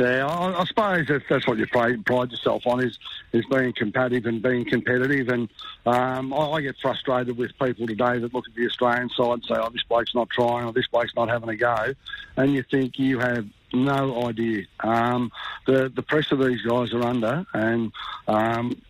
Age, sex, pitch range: 60-79, male, 120-140 Hz